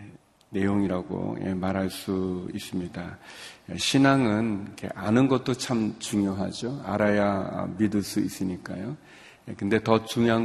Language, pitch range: Korean, 95-115 Hz